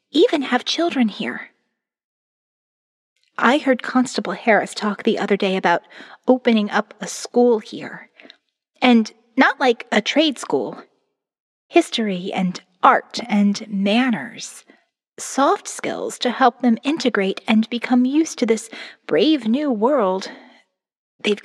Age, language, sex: 30-49, English, female